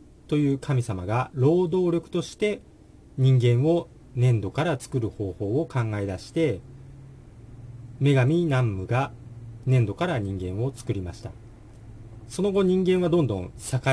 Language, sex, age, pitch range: Japanese, male, 40-59, 85-135 Hz